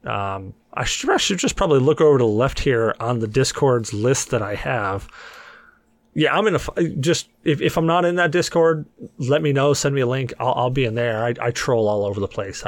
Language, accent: English, American